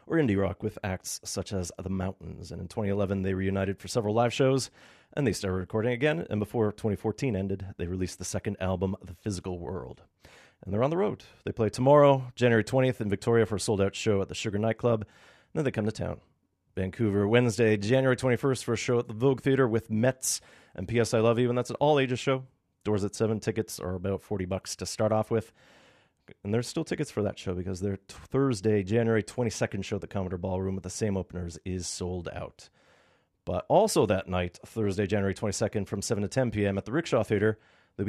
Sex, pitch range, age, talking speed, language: male, 95-120 Hz, 30-49, 215 wpm, English